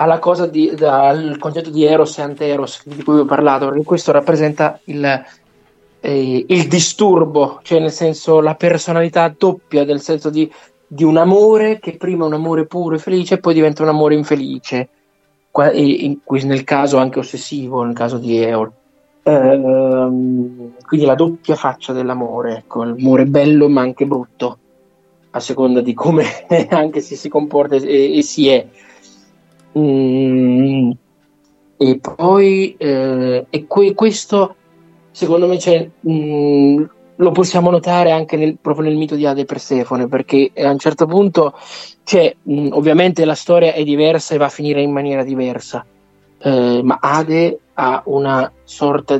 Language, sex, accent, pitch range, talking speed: Italian, male, native, 130-165 Hz, 160 wpm